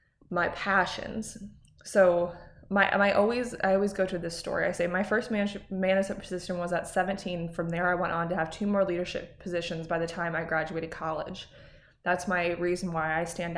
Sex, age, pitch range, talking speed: female, 20-39, 170-200 Hz, 200 wpm